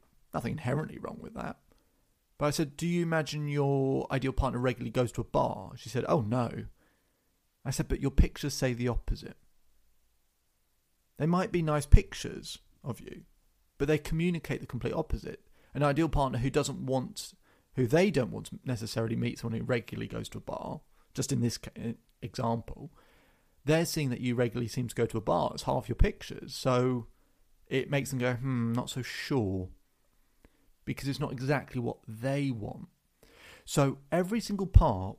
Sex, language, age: male, English, 30-49